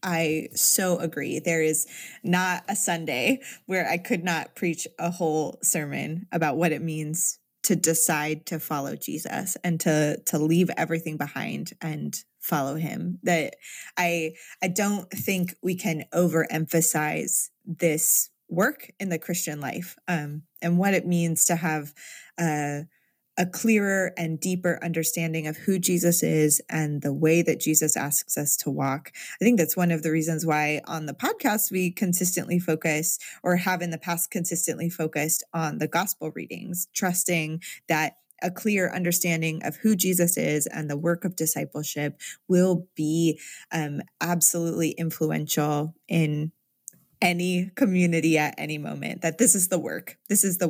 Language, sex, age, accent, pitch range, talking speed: English, female, 20-39, American, 155-180 Hz, 155 wpm